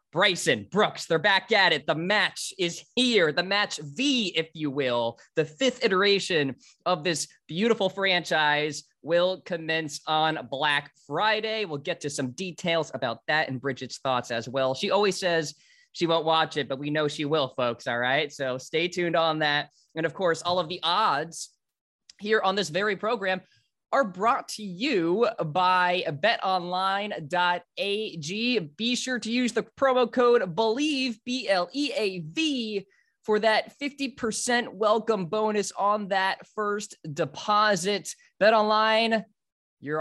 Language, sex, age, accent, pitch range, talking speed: English, male, 20-39, American, 150-210 Hz, 145 wpm